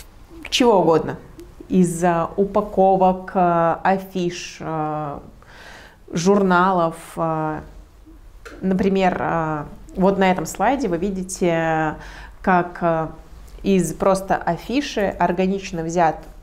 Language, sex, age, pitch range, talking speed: Russian, female, 20-39, 165-195 Hz, 70 wpm